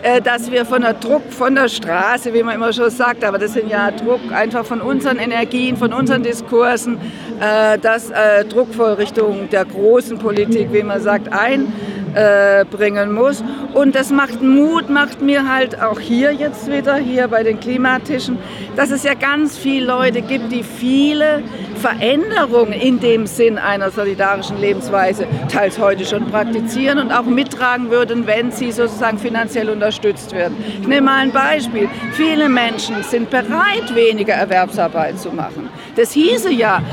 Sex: female